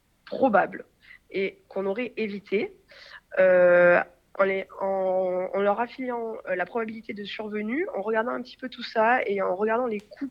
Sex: female